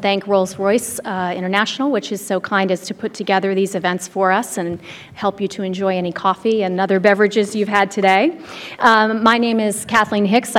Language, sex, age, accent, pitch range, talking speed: English, female, 40-59, American, 190-225 Hz, 200 wpm